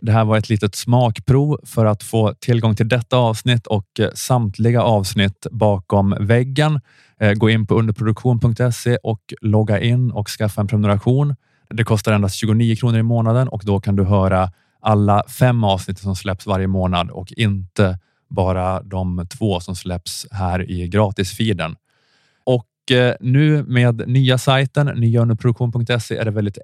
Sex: male